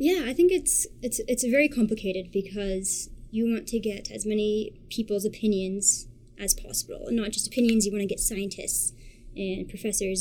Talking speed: 175 wpm